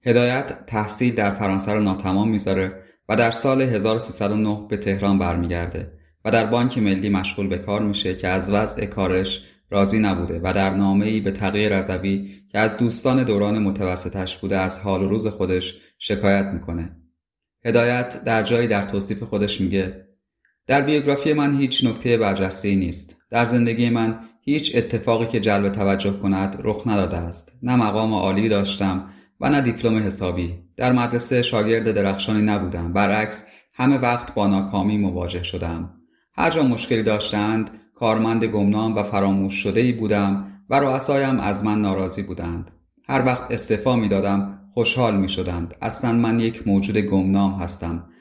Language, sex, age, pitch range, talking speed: Persian, male, 30-49, 95-115 Hz, 150 wpm